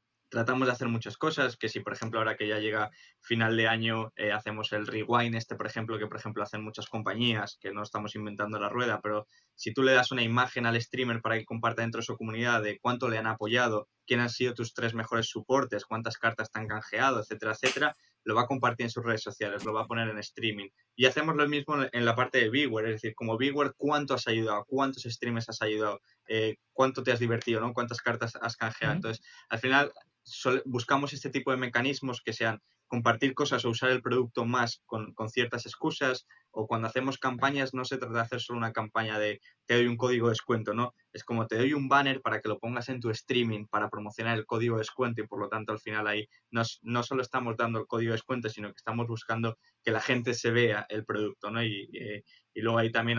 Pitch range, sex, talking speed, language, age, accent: 110-125 Hz, male, 235 wpm, Spanish, 20-39, Spanish